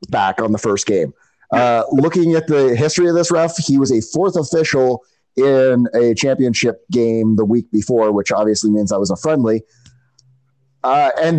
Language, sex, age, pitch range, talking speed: English, male, 30-49, 120-160 Hz, 180 wpm